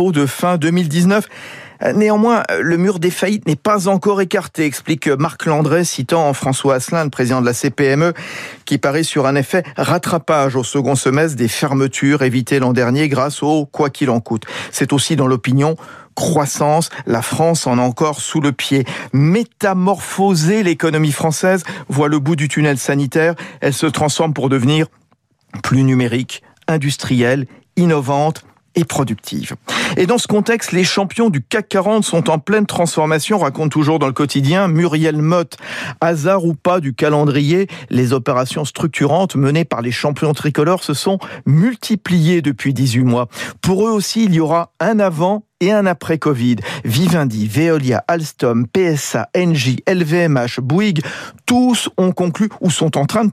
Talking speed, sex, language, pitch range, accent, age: 160 wpm, male, French, 140-180 Hz, French, 50-69